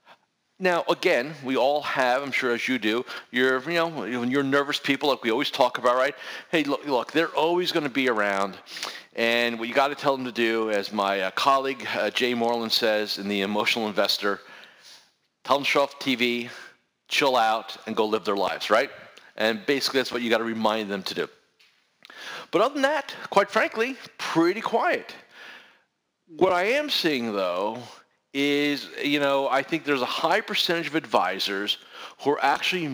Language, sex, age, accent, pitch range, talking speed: English, male, 40-59, American, 110-145 Hz, 190 wpm